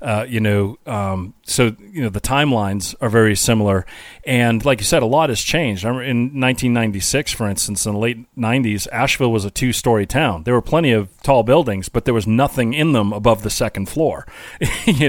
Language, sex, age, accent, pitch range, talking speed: English, male, 40-59, American, 110-130 Hz, 200 wpm